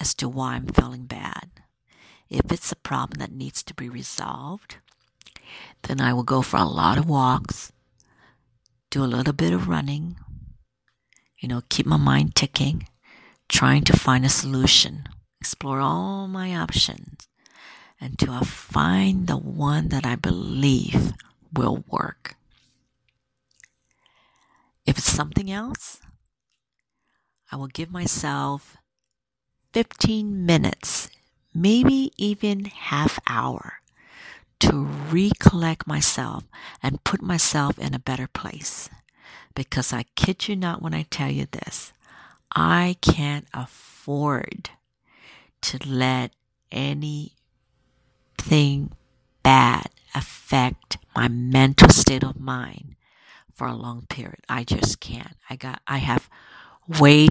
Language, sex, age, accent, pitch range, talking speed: English, female, 50-69, American, 125-165 Hz, 120 wpm